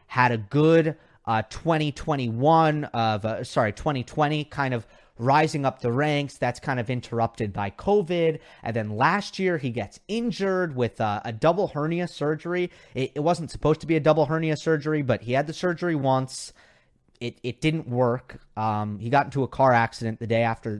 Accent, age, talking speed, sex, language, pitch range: American, 30-49, 185 wpm, male, English, 115-155 Hz